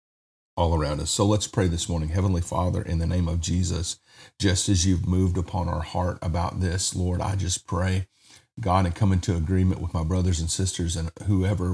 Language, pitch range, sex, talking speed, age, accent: English, 85-100 Hz, male, 205 wpm, 40-59, American